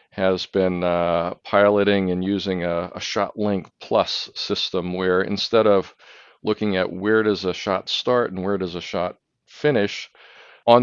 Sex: male